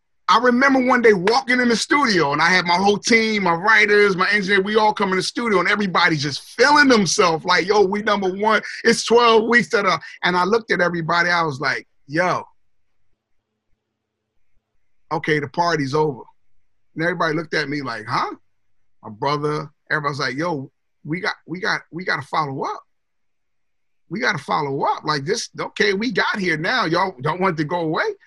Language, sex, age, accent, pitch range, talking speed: English, male, 30-49, American, 150-215 Hz, 195 wpm